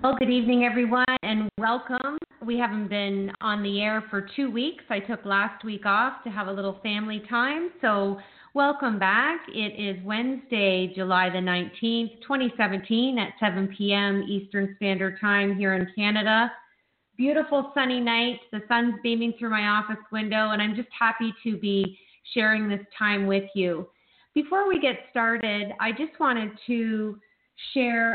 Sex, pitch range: female, 200-240 Hz